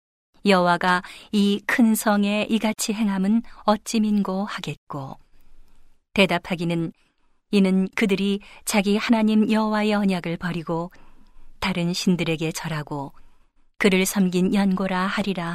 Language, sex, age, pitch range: Korean, female, 40-59, 170-205 Hz